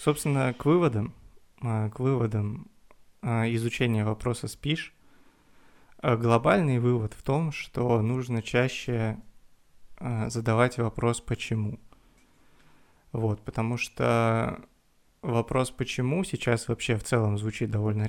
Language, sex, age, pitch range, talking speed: Russian, male, 20-39, 110-125 Hz, 95 wpm